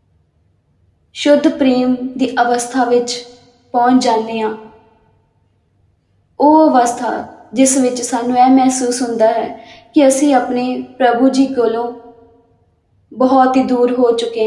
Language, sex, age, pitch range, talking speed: Punjabi, female, 20-39, 225-265 Hz, 115 wpm